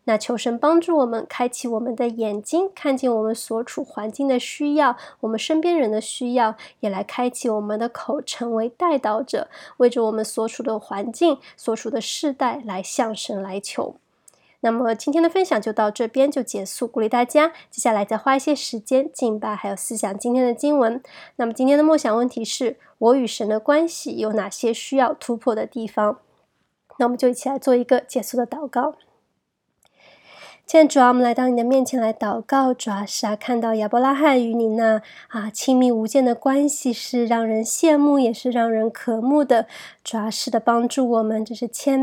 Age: 20-39